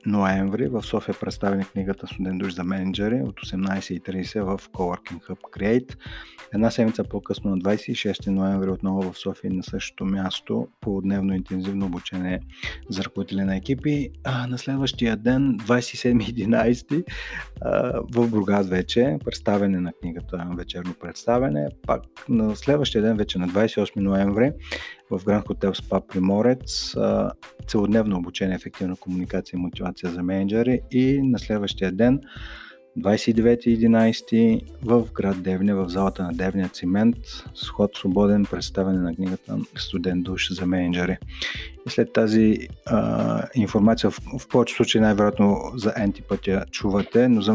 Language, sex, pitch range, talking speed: Bulgarian, male, 95-110 Hz, 135 wpm